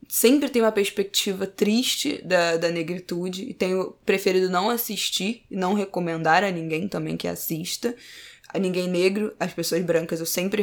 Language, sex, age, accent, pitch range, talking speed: Portuguese, female, 20-39, Brazilian, 170-200 Hz, 165 wpm